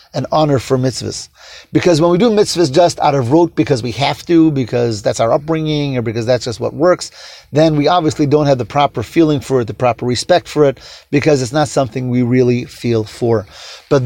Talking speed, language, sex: 220 wpm, English, male